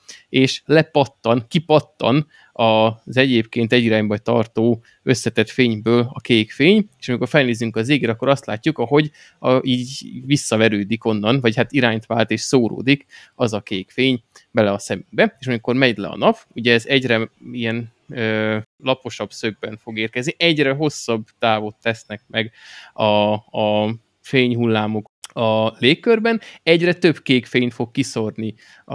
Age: 20-39